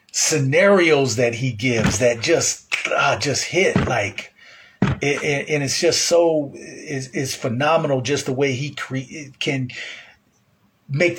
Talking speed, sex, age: 140 wpm, male, 40-59